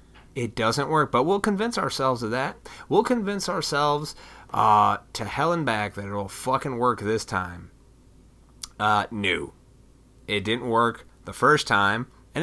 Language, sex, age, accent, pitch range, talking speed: English, male, 30-49, American, 105-150 Hz, 160 wpm